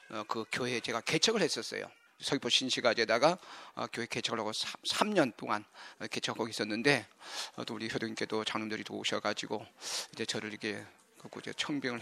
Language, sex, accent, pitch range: Korean, male, native, 125-175 Hz